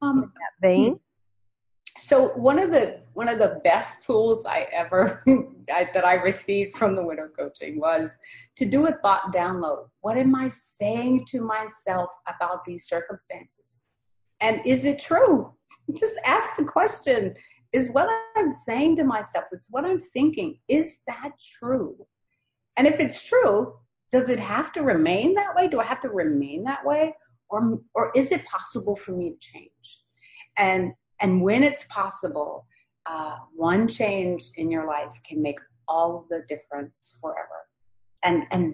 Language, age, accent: English, 40-59, American